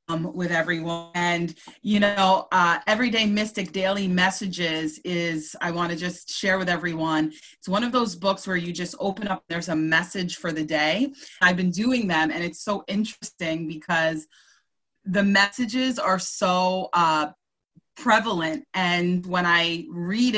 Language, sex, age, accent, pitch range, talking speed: English, female, 30-49, American, 170-200 Hz, 155 wpm